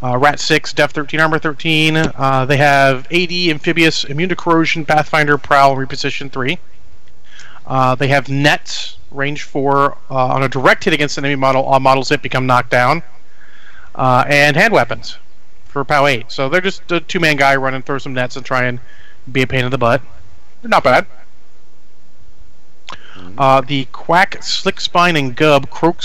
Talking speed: 165 wpm